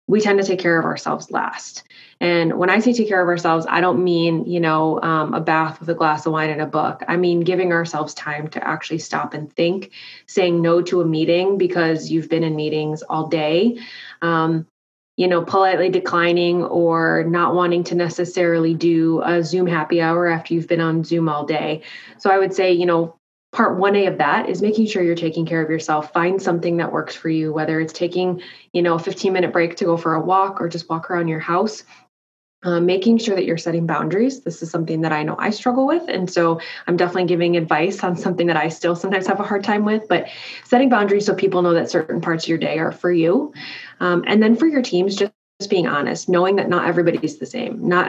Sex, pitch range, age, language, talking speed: female, 165-185 Hz, 20-39, English, 230 wpm